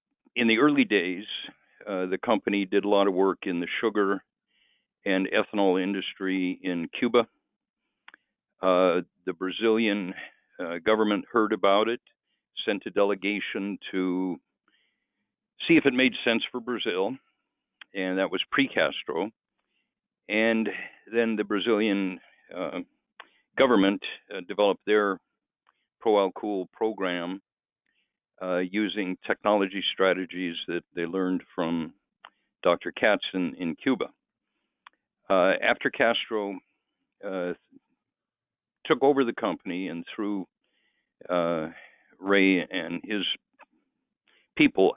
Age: 50-69